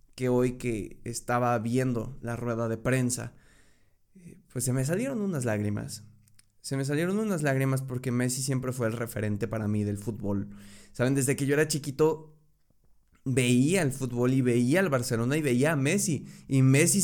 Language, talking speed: Spanish, 175 wpm